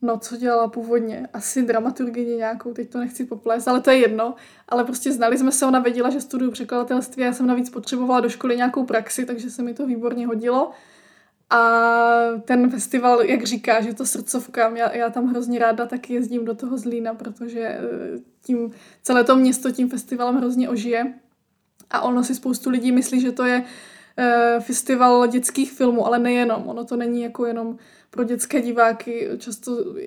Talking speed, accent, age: 180 wpm, native, 20-39